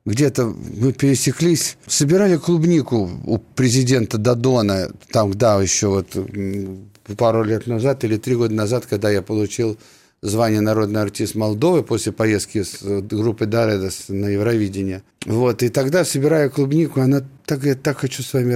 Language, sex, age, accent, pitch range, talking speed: Russian, male, 50-69, native, 110-145 Hz, 145 wpm